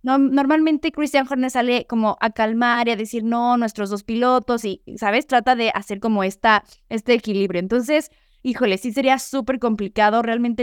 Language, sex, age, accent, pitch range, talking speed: Spanish, female, 20-39, Mexican, 185-240 Hz, 175 wpm